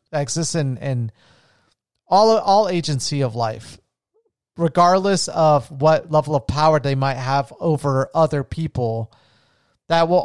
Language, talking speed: English, 135 wpm